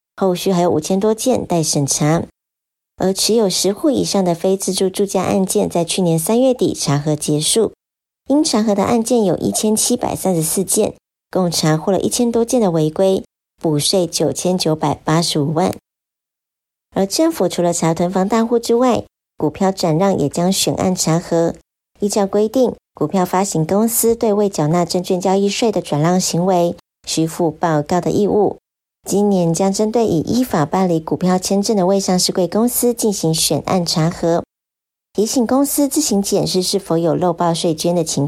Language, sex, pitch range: Chinese, male, 165-210 Hz